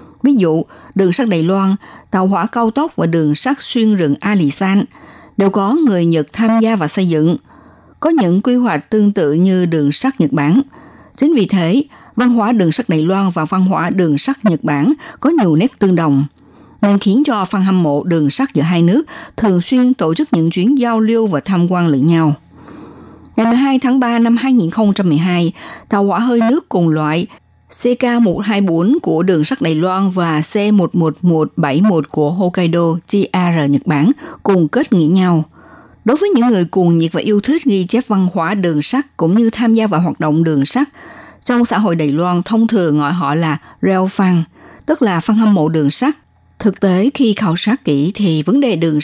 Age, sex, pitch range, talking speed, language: 60-79, female, 165-230 Hz, 200 wpm, Vietnamese